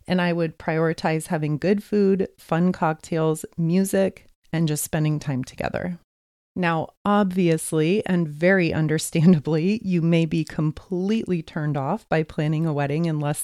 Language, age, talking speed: English, 30-49, 145 wpm